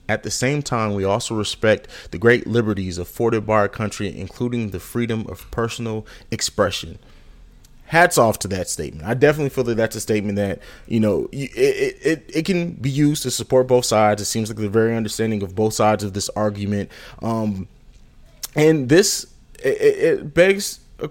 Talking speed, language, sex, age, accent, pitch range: 180 wpm, English, male, 20-39, American, 105-145 Hz